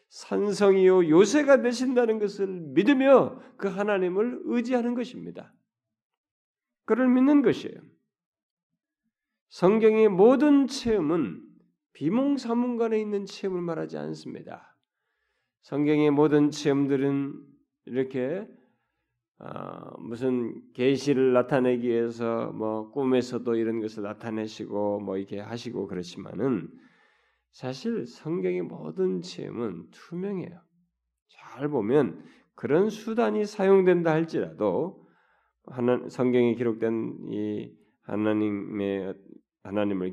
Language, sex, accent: Korean, male, native